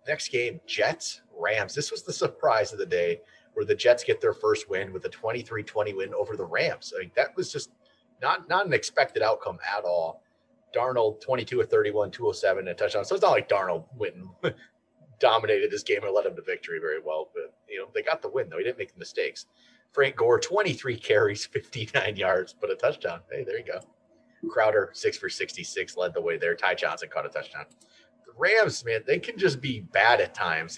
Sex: male